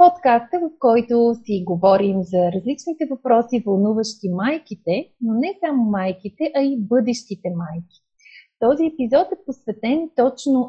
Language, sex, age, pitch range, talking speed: Bulgarian, female, 30-49, 200-270 Hz, 130 wpm